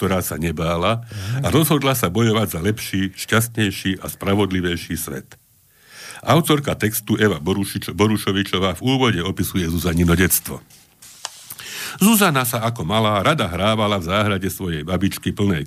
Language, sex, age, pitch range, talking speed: Slovak, male, 60-79, 85-115 Hz, 125 wpm